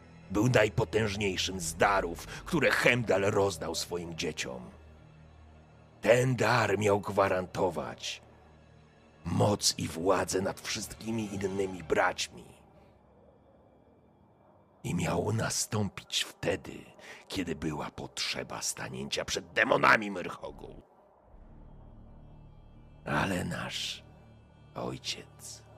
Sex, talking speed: male, 80 wpm